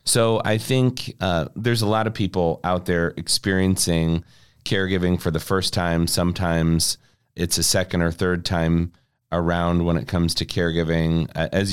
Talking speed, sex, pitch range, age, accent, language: 160 wpm, male, 90-110 Hz, 30-49, American, English